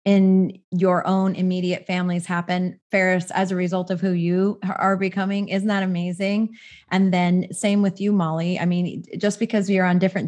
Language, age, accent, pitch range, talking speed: English, 30-49, American, 175-205 Hz, 180 wpm